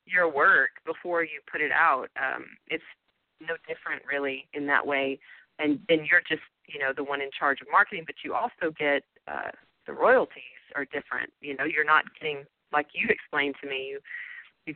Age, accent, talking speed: 30-49, American, 195 wpm